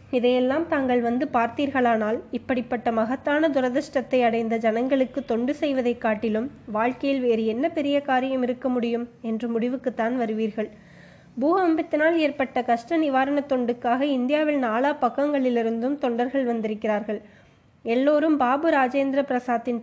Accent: native